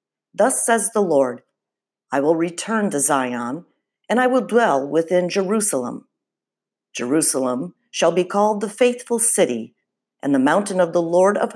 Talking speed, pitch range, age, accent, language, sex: 150 wpm, 145-220 Hz, 50-69, American, English, female